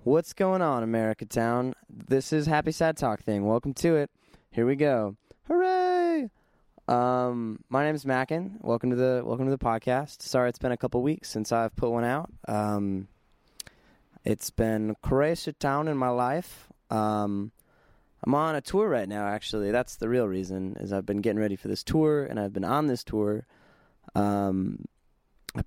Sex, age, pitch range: male, 20-39, 105-140 Hz